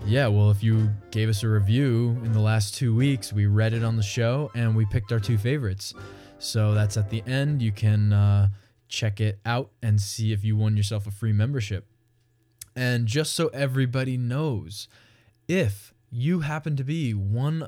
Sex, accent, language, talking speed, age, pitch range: male, American, English, 190 wpm, 20-39, 105-125 Hz